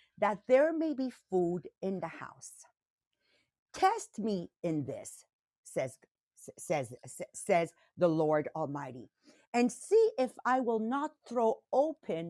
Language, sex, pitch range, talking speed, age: English, female, 175-260 Hz, 125 wpm, 50-69